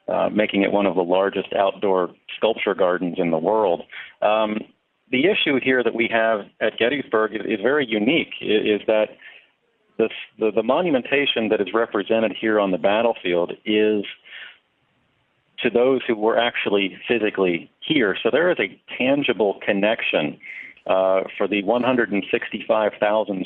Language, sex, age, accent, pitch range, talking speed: English, male, 40-59, American, 95-110 Hz, 145 wpm